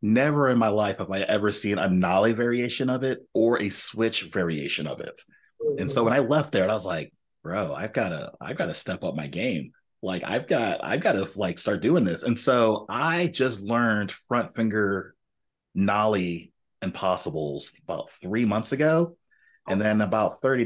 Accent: American